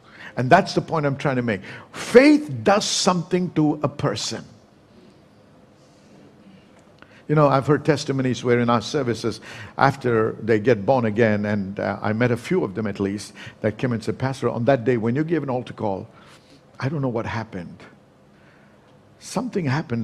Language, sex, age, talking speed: English, male, 60-79, 175 wpm